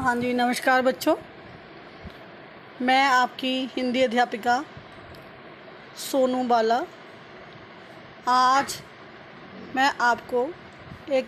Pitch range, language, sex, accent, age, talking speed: 250-310 Hz, Hindi, female, native, 20-39, 75 wpm